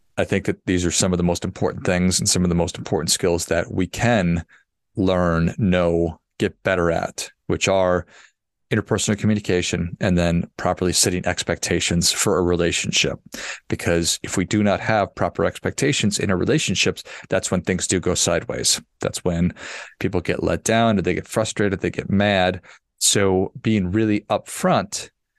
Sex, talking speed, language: male, 170 wpm, English